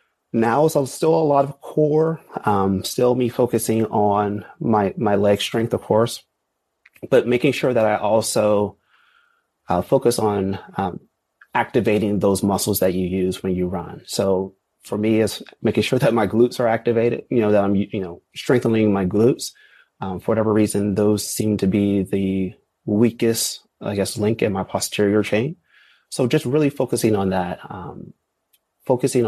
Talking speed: 170 wpm